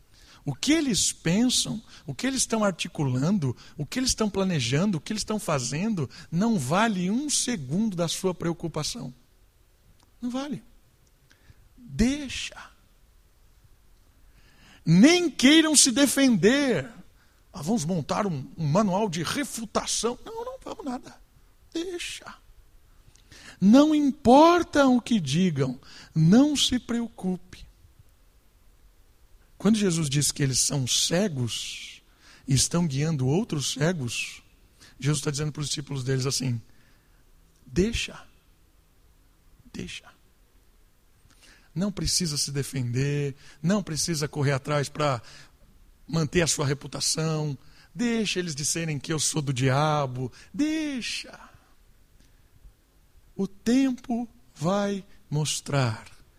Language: Portuguese